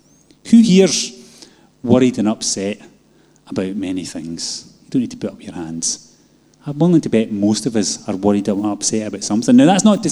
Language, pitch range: English, 115-190 Hz